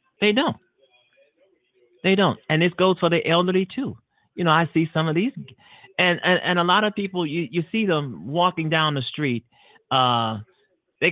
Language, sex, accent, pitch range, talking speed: English, male, American, 135-200 Hz, 190 wpm